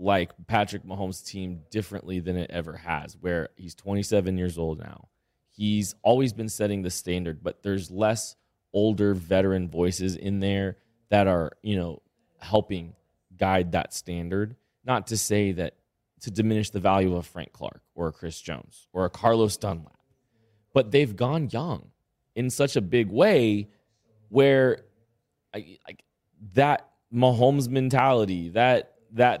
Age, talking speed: 20-39, 145 wpm